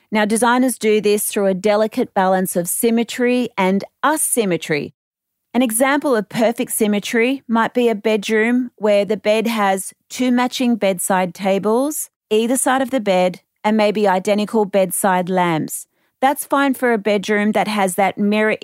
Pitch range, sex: 190-235 Hz, female